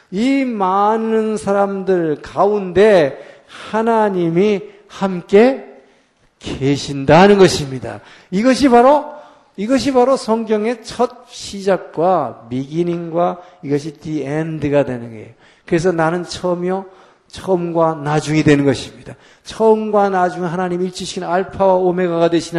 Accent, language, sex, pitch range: native, Korean, male, 155-205 Hz